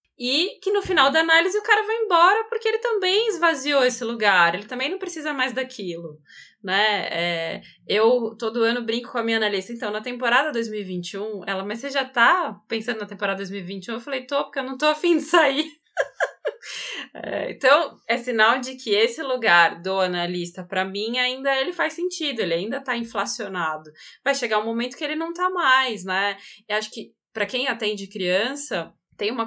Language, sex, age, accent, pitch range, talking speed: Portuguese, female, 20-39, Brazilian, 210-275 Hz, 185 wpm